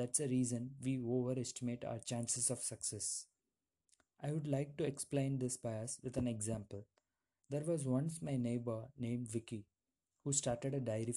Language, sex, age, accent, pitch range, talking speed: English, male, 20-39, Indian, 110-130 Hz, 160 wpm